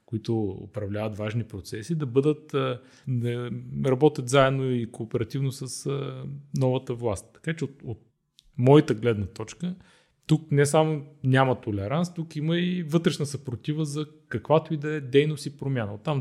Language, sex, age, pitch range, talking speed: Bulgarian, male, 30-49, 115-150 Hz, 150 wpm